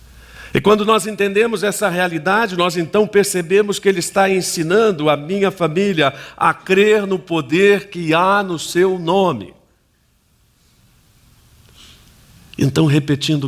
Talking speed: 120 wpm